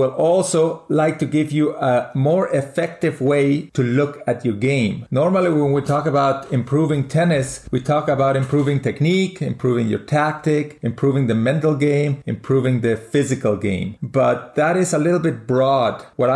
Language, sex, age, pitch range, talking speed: English, male, 40-59, 135-165 Hz, 170 wpm